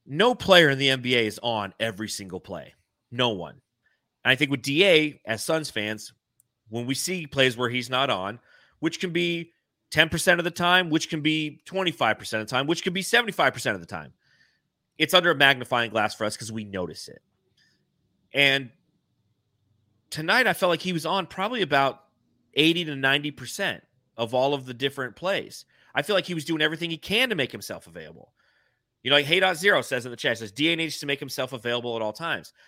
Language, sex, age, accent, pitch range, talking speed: English, male, 30-49, American, 125-170 Hz, 200 wpm